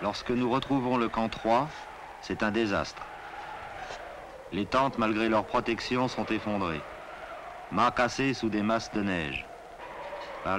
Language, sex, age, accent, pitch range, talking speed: French, male, 50-69, French, 105-125 Hz, 130 wpm